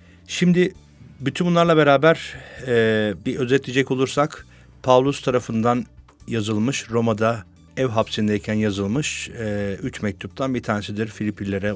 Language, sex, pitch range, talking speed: Turkish, male, 105-130 Hz, 105 wpm